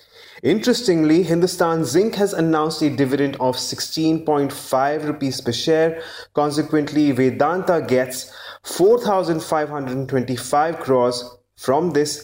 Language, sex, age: English, male, 30-49